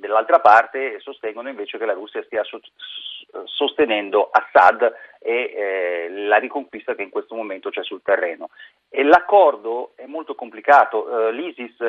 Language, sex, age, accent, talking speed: Italian, male, 40-59, native, 145 wpm